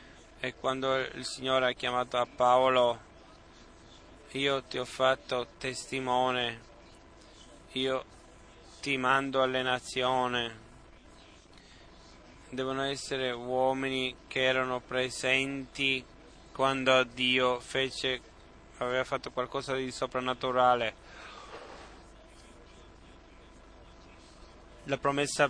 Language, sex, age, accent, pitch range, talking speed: Italian, male, 20-39, native, 120-130 Hz, 80 wpm